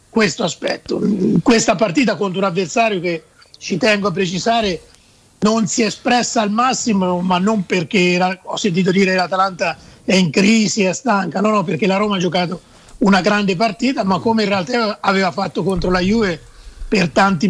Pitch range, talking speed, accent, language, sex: 185-215 Hz, 175 wpm, native, Italian, male